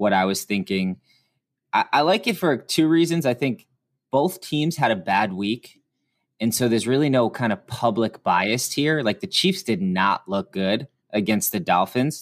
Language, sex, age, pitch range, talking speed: English, male, 20-39, 105-140 Hz, 190 wpm